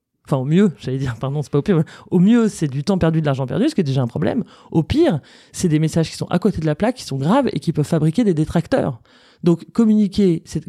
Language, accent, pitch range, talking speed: French, French, 155-185 Hz, 280 wpm